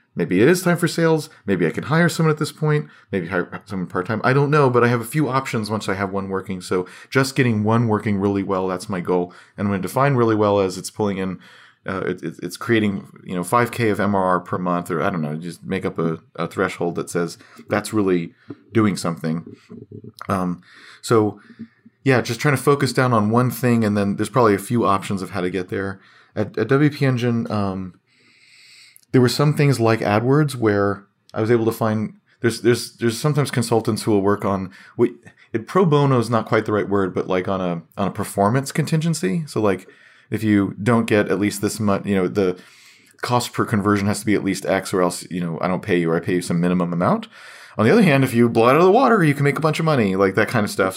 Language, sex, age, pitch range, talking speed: English, male, 30-49, 95-130 Hz, 245 wpm